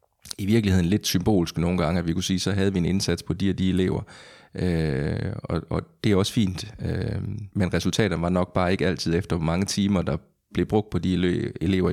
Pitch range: 90-105 Hz